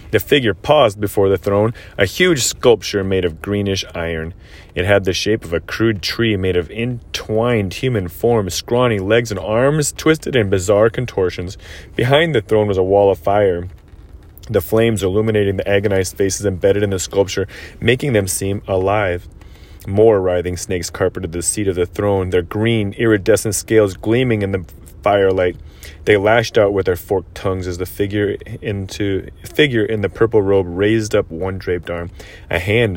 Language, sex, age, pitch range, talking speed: English, male, 30-49, 90-110 Hz, 175 wpm